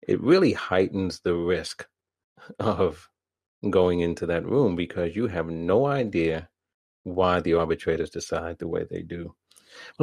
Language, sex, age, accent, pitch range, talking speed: English, male, 40-59, American, 85-90 Hz, 145 wpm